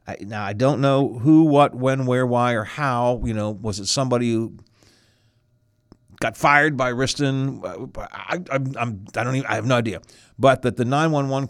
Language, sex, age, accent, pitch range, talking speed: English, male, 50-69, American, 110-140 Hz, 175 wpm